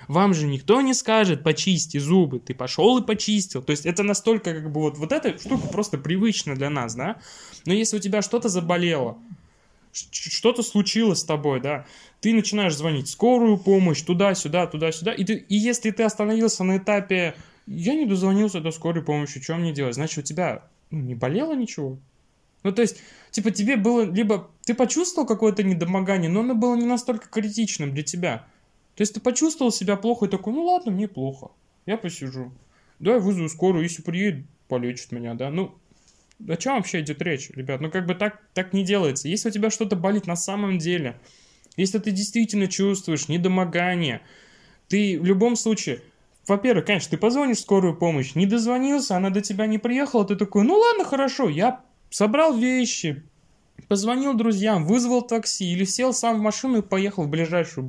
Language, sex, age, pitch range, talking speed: Russian, male, 20-39, 160-220 Hz, 180 wpm